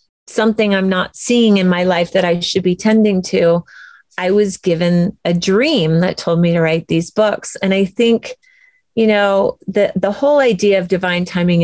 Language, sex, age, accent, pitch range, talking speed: English, female, 30-49, American, 175-220 Hz, 190 wpm